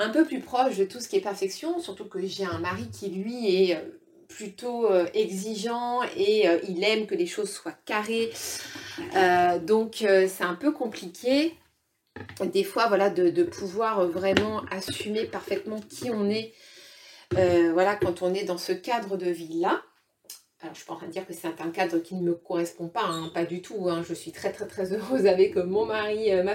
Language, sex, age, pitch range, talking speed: French, female, 30-49, 185-250 Hz, 200 wpm